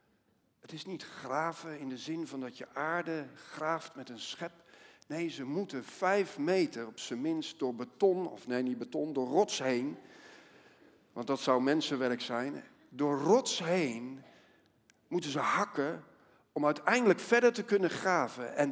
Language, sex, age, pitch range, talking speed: Dutch, male, 50-69, 155-245 Hz, 160 wpm